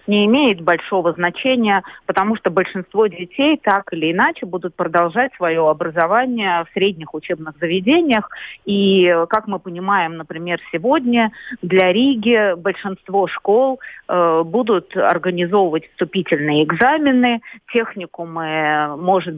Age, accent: 30-49, native